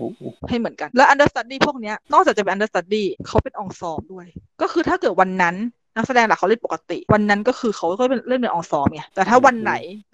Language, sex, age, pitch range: Thai, female, 20-39, 195-265 Hz